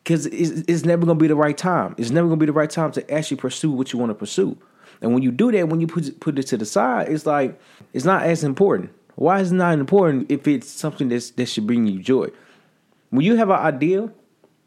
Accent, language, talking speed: American, English, 255 wpm